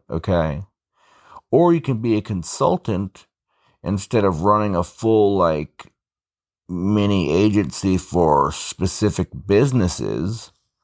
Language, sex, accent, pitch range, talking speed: English, male, American, 85-105 Hz, 100 wpm